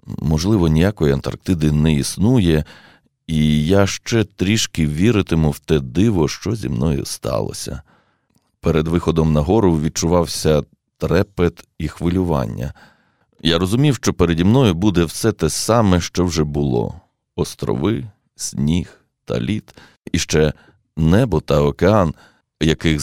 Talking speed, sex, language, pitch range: 120 wpm, male, Ukrainian, 75-100 Hz